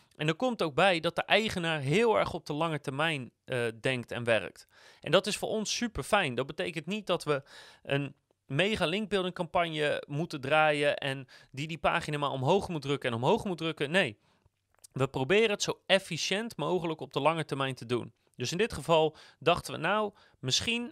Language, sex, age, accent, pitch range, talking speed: Dutch, male, 30-49, Dutch, 135-190 Hz, 195 wpm